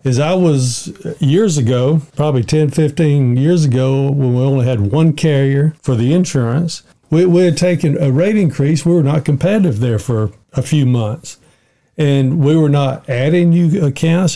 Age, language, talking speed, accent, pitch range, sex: 50-69, English, 175 wpm, American, 125-165 Hz, male